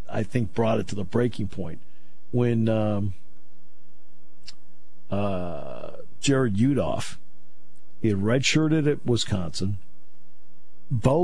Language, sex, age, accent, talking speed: English, male, 50-69, American, 100 wpm